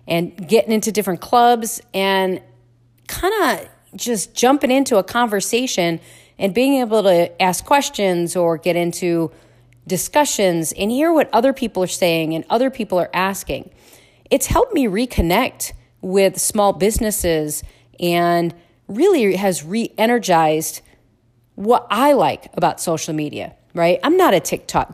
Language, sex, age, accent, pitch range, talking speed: English, female, 40-59, American, 170-235 Hz, 135 wpm